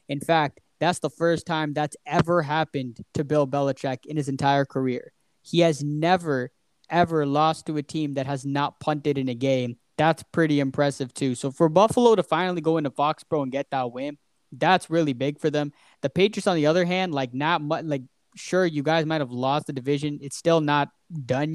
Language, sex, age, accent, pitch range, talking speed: English, male, 20-39, American, 140-175 Hz, 210 wpm